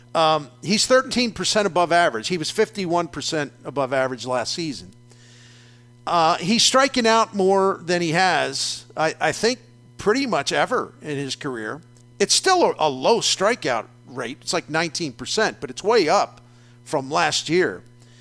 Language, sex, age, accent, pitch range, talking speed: English, male, 50-69, American, 120-195 Hz, 150 wpm